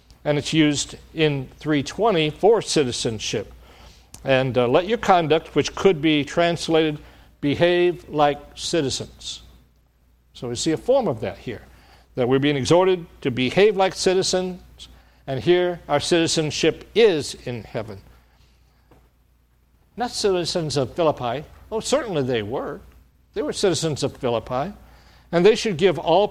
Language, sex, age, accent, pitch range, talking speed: English, male, 60-79, American, 105-175 Hz, 135 wpm